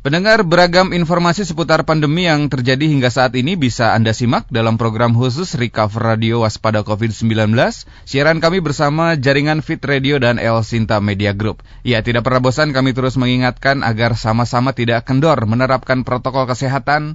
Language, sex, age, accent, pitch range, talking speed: Indonesian, male, 20-39, native, 110-145 Hz, 160 wpm